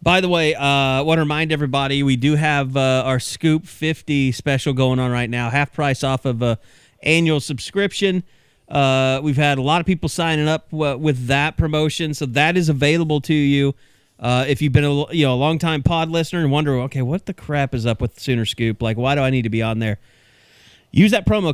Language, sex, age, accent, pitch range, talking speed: English, male, 30-49, American, 130-165 Hz, 225 wpm